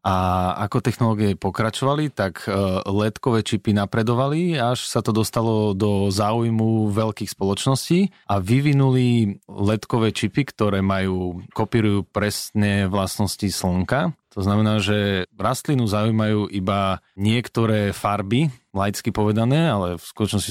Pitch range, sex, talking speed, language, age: 100-115 Hz, male, 115 wpm, Slovak, 30-49